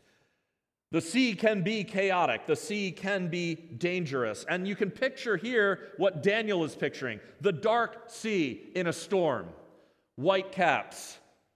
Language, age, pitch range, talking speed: English, 40-59, 165-220 Hz, 140 wpm